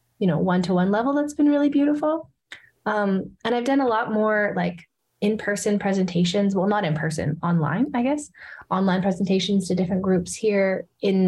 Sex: female